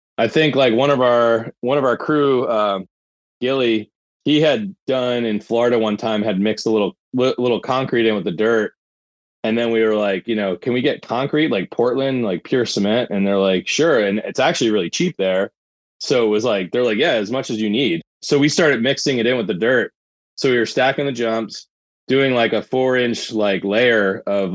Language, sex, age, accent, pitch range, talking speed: English, male, 20-39, American, 105-130 Hz, 220 wpm